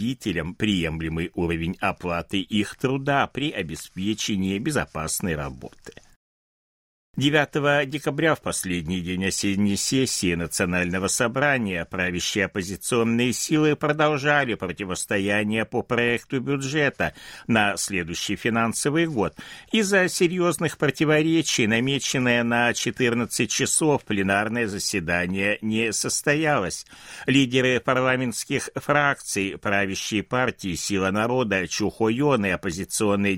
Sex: male